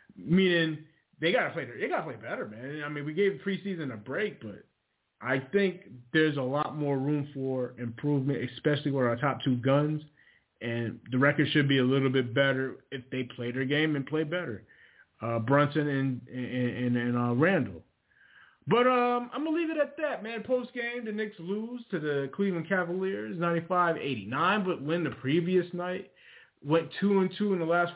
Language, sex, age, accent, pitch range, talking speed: English, male, 30-49, American, 125-170 Hz, 190 wpm